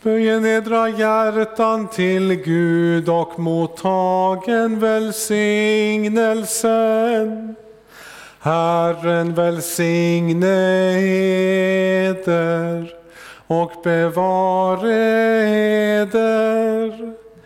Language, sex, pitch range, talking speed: Swedish, male, 185-230 Hz, 50 wpm